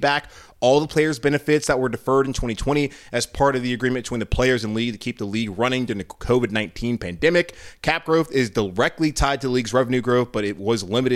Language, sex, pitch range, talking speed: English, male, 115-185 Hz, 225 wpm